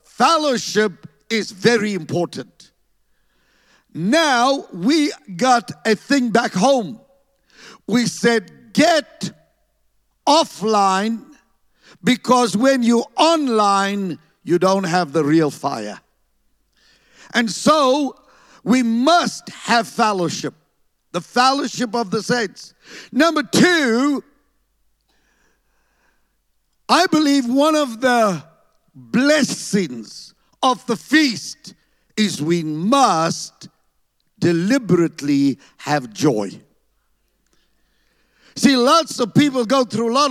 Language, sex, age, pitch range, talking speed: English, male, 60-79, 185-270 Hz, 90 wpm